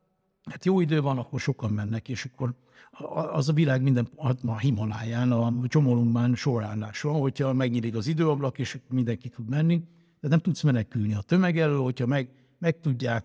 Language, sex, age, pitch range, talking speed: Hungarian, male, 60-79, 115-150 Hz, 165 wpm